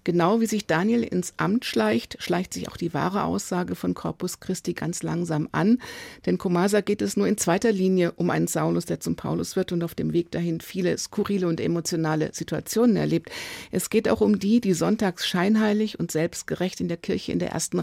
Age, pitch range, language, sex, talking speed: 50-69, 165-205 Hz, German, female, 205 wpm